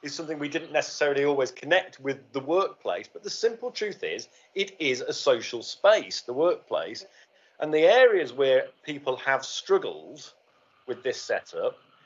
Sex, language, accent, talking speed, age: male, English, British, 160 wpm, 40-59